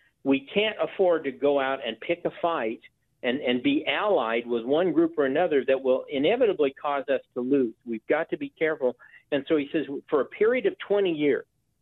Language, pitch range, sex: English, 140-205 Hz, male